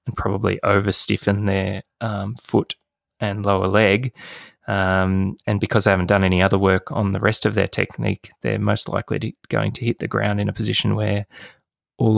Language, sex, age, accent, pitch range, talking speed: English, male, 20-39, Australian, 100-110 Hz, 180 wpm